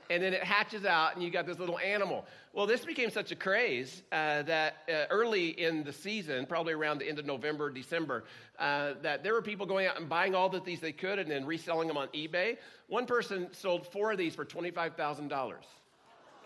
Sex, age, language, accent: male, 50-69, English, American